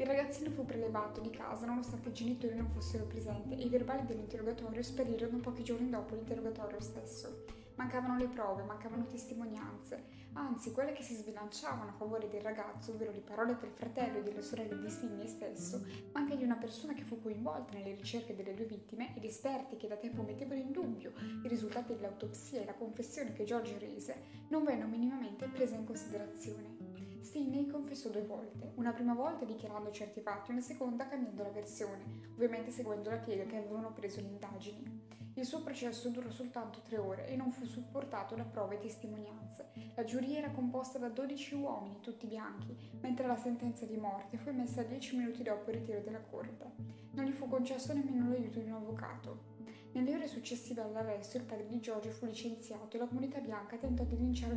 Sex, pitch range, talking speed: female, 210-250 Hz, 190 wpm